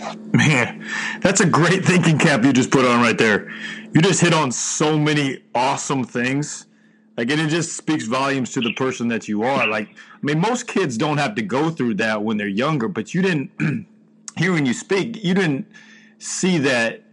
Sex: male